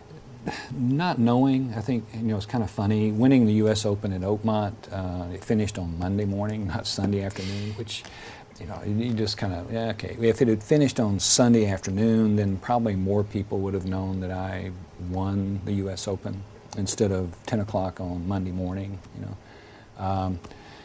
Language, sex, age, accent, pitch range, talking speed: English, male, 50-69, American, 95-110 Hz, 190 wpm